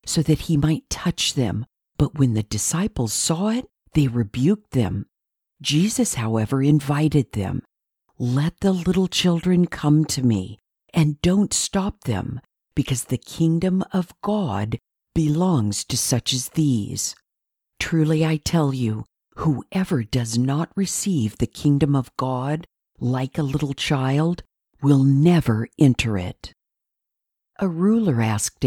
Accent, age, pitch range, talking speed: American, 50-69, 115-170 Hz, 130 wpm